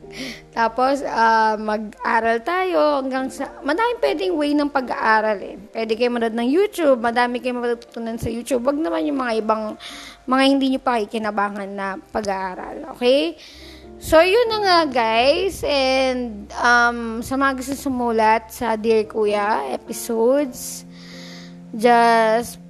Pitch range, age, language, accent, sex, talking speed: 225-280 Hz, 20-39, Filipino, native, female, 130 wpm